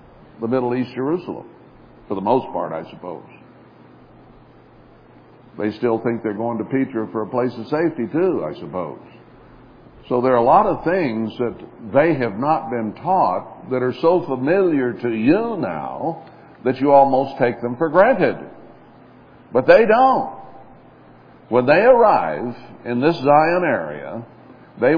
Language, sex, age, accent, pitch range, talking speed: English, male, 60-79, American, 115-155 Hz, 150 wpm